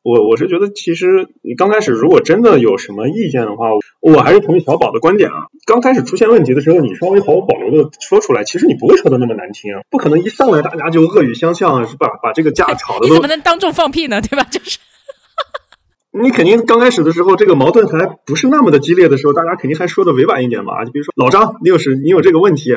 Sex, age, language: male, 20-39, Chinese